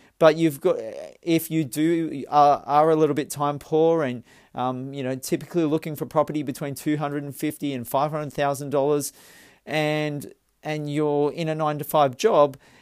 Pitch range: 135-160 Hz